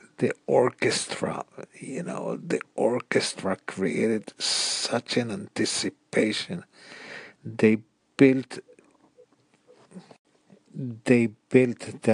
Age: 50-69